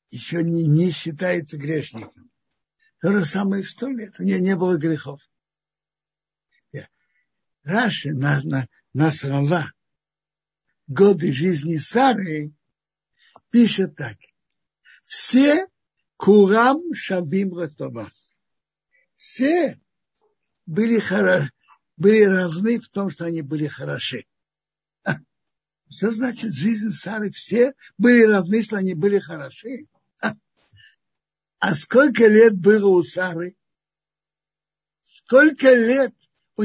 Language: Russian